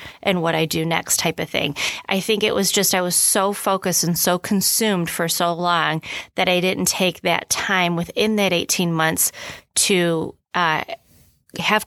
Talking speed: 175 wpm